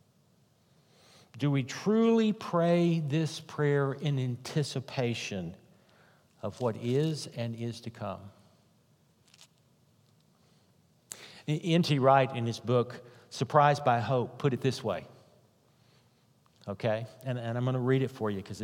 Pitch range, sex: 115-150 Hz, male